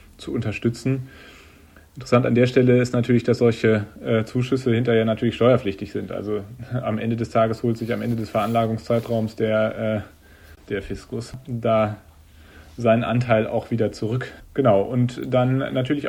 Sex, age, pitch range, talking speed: male, 40-59, 105-120 Hz, 150 wpm